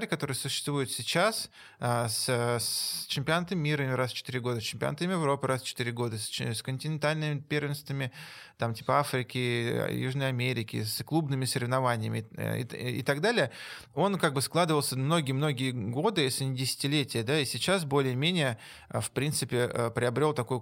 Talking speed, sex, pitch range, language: 140 wpm, male, 125-150 Hz, Russian